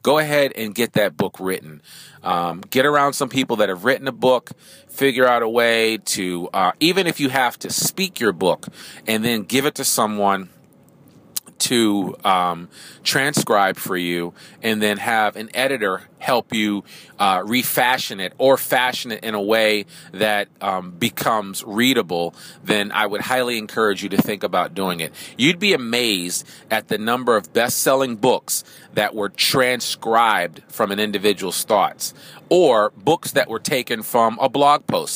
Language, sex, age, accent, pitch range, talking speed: English, male, 40-59, American, 100-130 Hz, 165 wpm